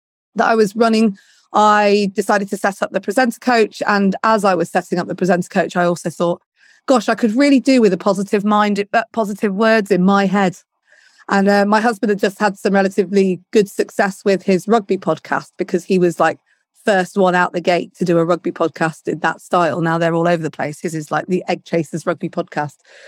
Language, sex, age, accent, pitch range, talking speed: English, female, 30-49, British, 180-225 Hz, 220 wpm